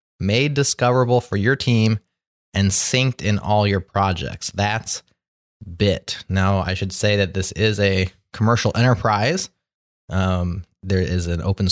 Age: 20-39